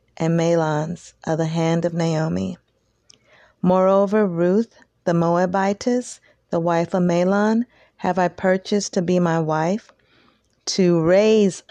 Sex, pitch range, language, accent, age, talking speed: female, 160-195 Hz, English, American, 40-59, 125 wpm